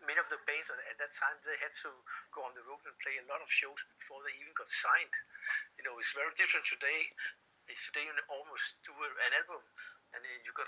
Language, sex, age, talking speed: English, male, 60-79, 230 wpm